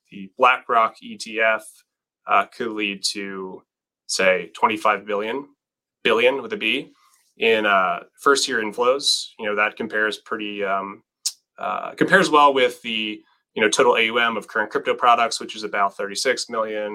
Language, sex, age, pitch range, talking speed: English, male, 20-39, 100-125 Hz, 150 wpm